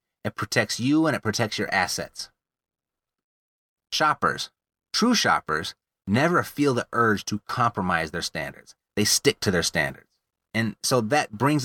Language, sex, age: English, male, 30-49